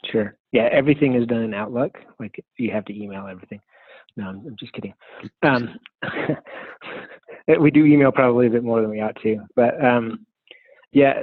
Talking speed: 175 wpm